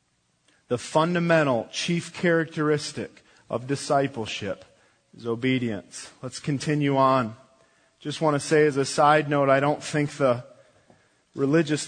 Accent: American